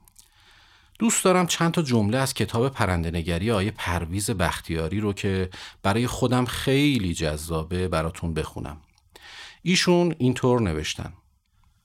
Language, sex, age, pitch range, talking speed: Persian, male, 40-59, 90-130 Hz, 110 wpm